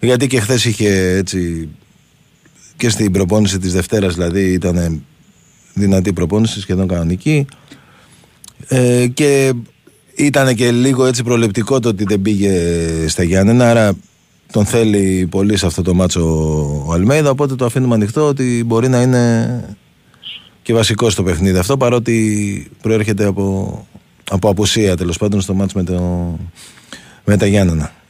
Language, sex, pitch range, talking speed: Greek, male, 95-130 Hz, 140 wpm